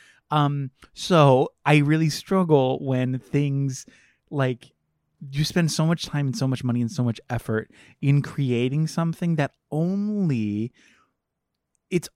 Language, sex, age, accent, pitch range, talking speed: English, male, 20-39, American, 110-145 Hz, 135 wpm